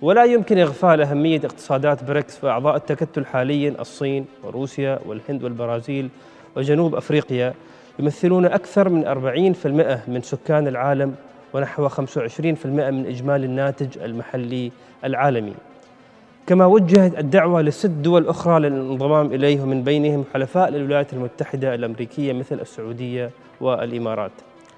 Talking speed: 110 wpm